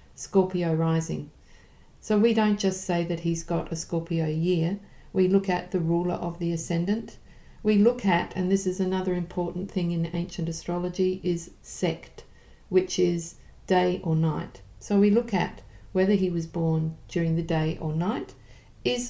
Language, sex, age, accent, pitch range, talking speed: English, female, 50-69, Australian, 170-200 Hz, 170 wpm